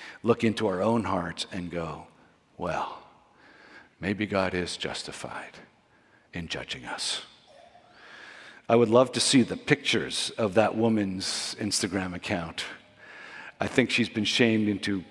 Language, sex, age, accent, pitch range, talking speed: English, male, 50-69, American, 100-130 Hz, 130 wpm